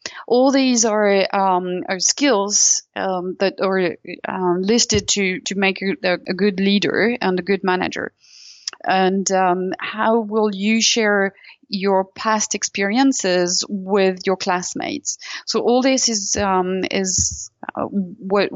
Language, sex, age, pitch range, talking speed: English, female, 30-49, 185-220 Hz, 135 wpm